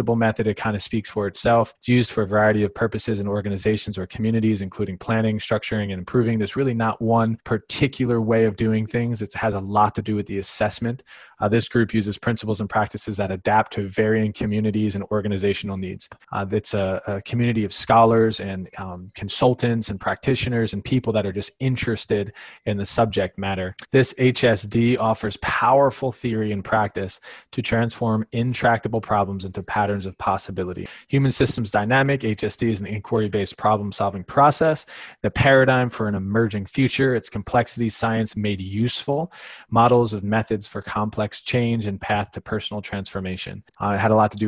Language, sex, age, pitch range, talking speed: English, male, 20-39, 100-115 Hz, 175 wpm